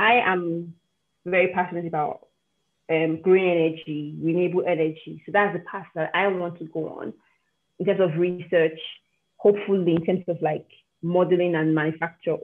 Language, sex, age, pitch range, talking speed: English, female, 20-39, 165-185 Hz, 155 wpm